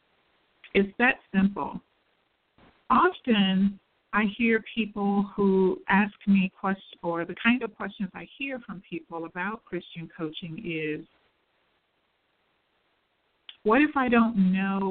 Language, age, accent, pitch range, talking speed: English, 50-69, American, 180-225 Hz, 115 wpm